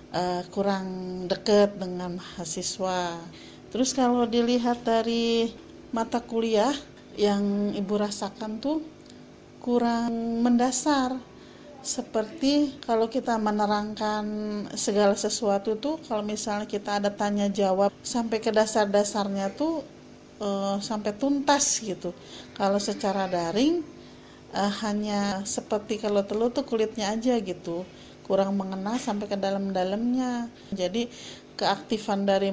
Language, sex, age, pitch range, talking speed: Indonesian, female, 40-59, 190-230 Hz, 105 wpm